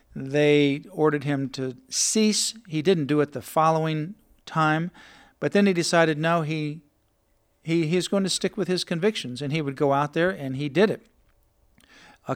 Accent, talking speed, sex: American, 180 wpm, male